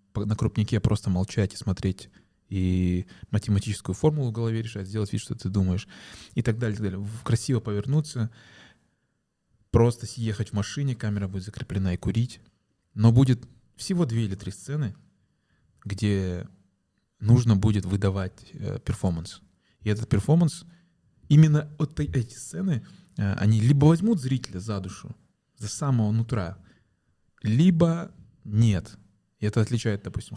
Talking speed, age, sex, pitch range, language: 130 wpm, 20-39, male, 100-145 Hz, Russian